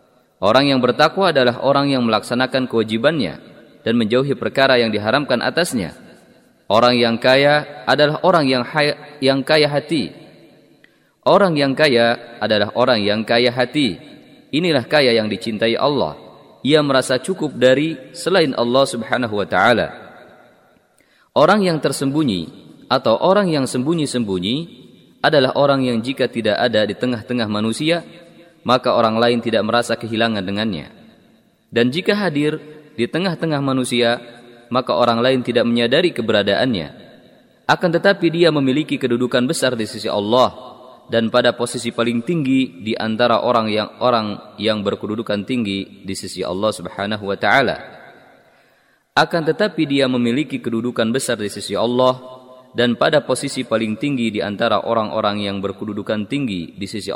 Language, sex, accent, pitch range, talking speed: Indonesian, male, native, 115-140 Hz, 135 wpm